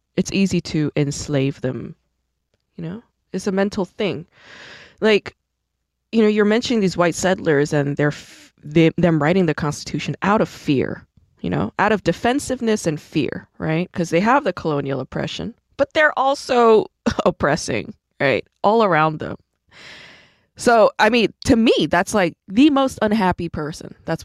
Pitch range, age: 160-215 Hz, 20-39